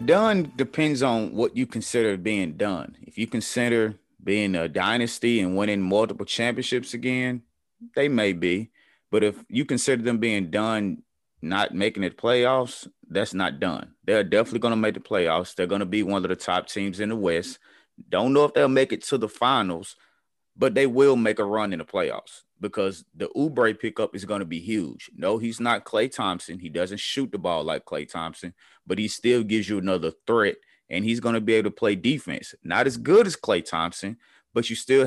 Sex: male